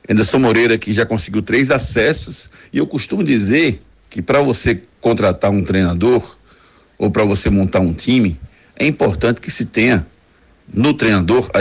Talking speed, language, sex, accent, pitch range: 160 wpm, Portuguese, male, Brazilian, 95-115 Hz